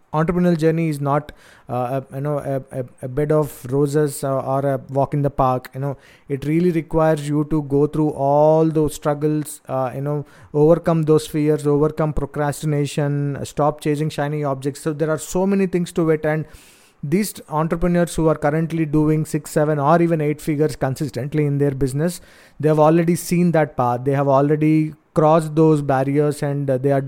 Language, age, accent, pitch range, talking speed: English, 30-49, Indian, 140-155 Hz, 180 wpm